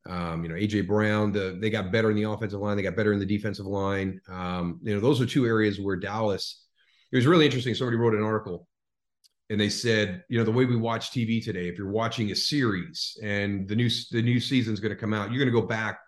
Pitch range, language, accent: 95-115 Hz, English, American